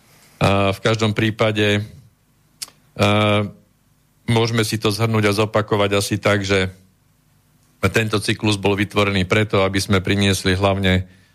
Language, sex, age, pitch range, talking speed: Slovak, male, 50-69, 100-115 Hz, 110 wpm